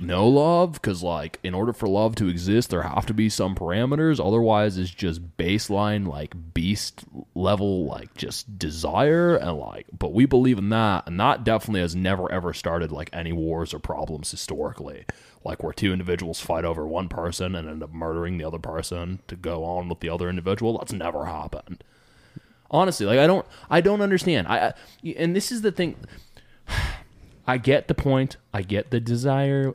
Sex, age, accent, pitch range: male, 20-39, American, 90-125 Hz